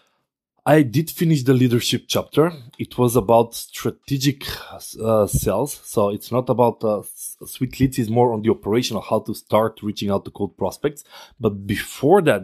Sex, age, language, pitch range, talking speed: male, 20-39, English, 105-135 Hz, 170 wpm